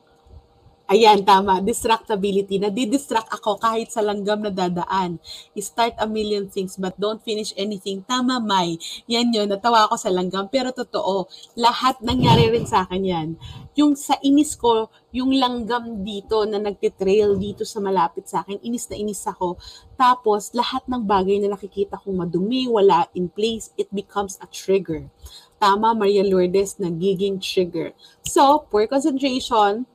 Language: English